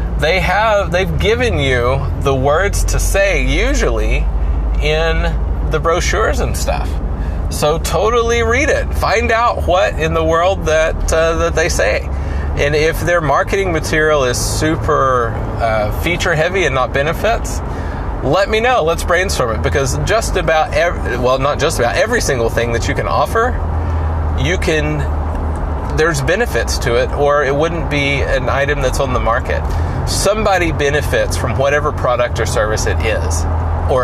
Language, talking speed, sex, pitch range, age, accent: English, 160 wpm, male, 75-115 Hz, 30-49, American